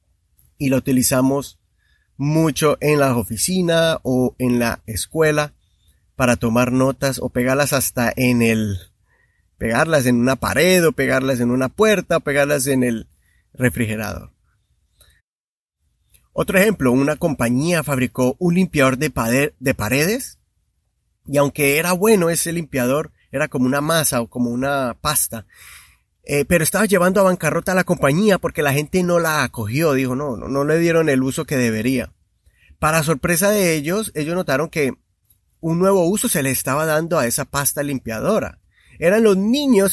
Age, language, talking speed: 30-49, English, 155 wpm